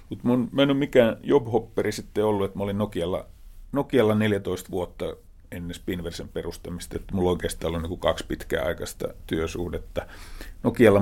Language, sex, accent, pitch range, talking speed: Finnish, male, native, 85-100 Hz, 140 wpm